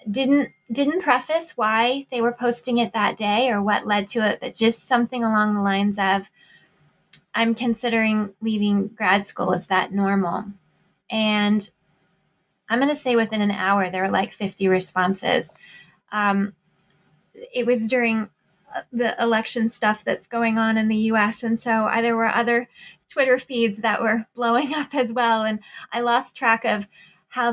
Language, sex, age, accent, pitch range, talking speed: English, female, 20-39, American, 200-240 Hz, 165 wpm